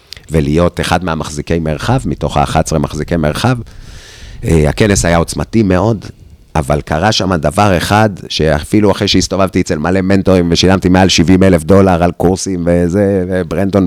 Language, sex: Hebrew, male